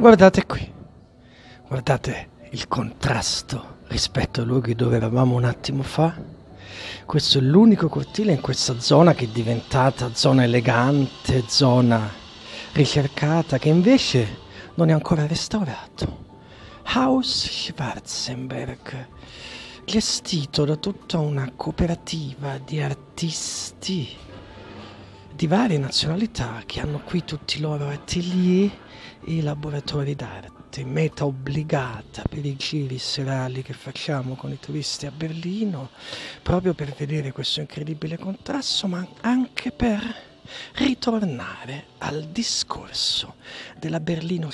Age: 40-59